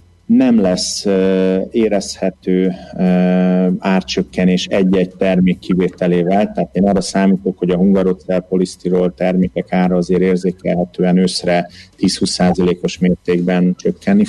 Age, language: 30-49, Hungarian